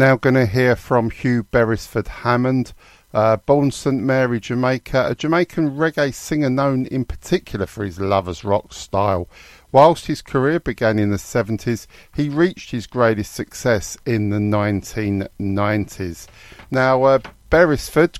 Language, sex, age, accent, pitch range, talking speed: English, male, 50-69, British, 100-135 Hz, 145 wpm